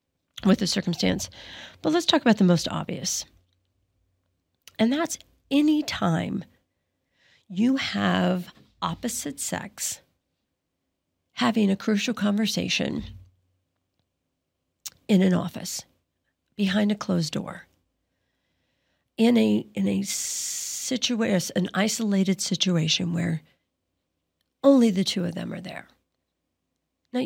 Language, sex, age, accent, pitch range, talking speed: English, female, 50-69, American, 170-260 Hz, 100 wpm